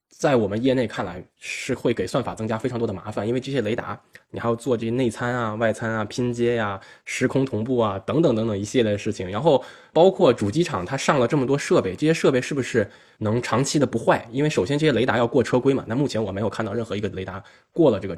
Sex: male